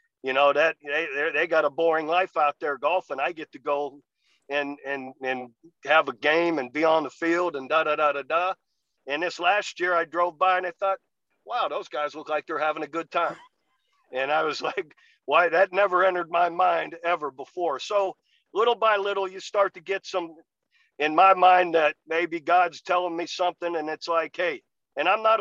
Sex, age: male, 50-69